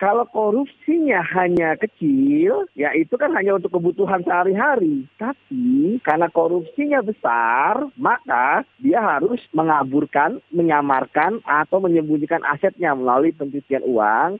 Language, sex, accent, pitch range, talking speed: Indonesian, male, native, 145-180 Hz, 110 wpm